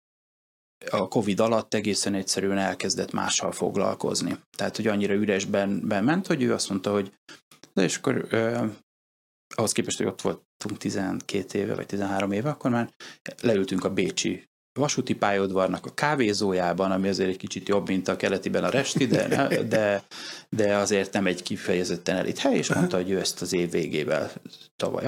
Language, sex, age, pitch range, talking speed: Hungarian, male, 30-49, 95-110 Hz, 160 wpm